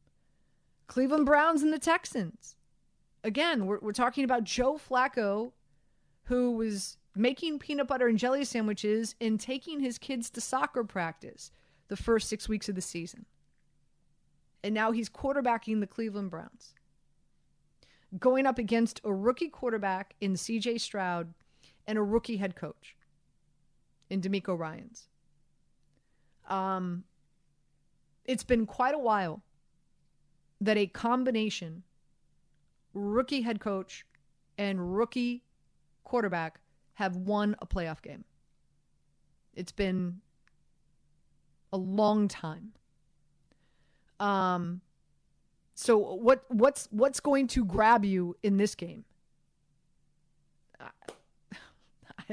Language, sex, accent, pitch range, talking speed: English, female, American, 160-235 Hz, 110 wpm